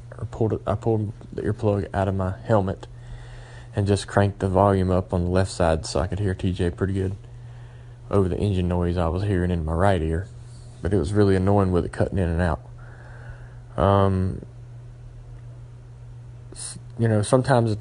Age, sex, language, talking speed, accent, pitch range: 30-49, male, English, 175 wpm, American, 95-120 Hz